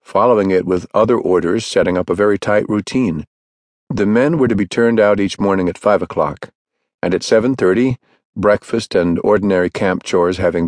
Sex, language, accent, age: male, English, American, 50-69